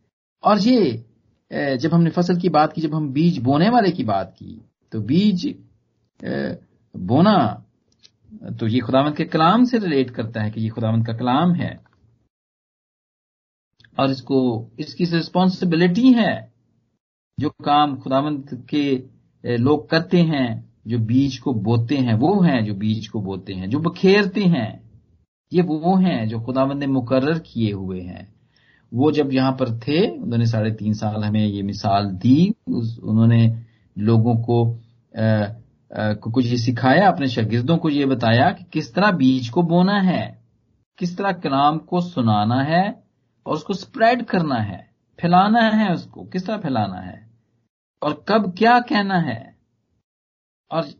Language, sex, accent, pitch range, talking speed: Hindi, male, native, 115-175 Hz, 150 wpm